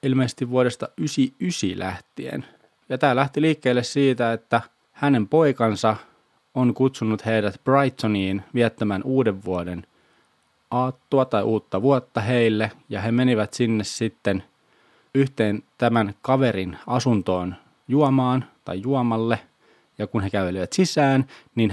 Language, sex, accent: Finnish, male, native